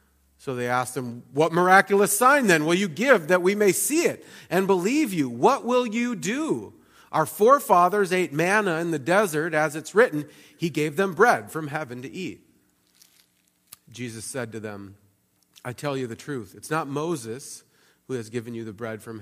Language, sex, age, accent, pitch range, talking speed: English, male, 40-59, American, 110-160 Hz, 185 wpm